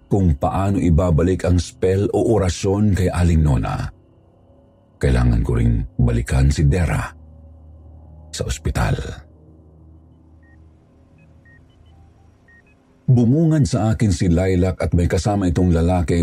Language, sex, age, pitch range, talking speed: Filipino, male, 50-69, 80-115 Hz, 105 wpm